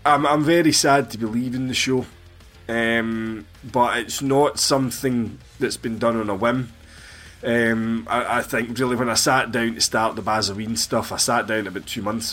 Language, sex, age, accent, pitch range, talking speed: English, male, 20-39, British, 100-120 Hz, 195 wpm